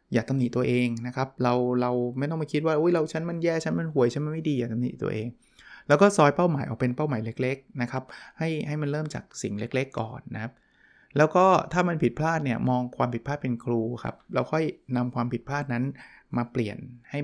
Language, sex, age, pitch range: Thai, male, 20-39, 125-160 Hz